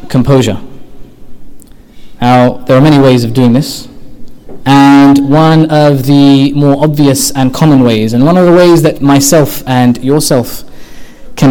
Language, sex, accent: English, male, British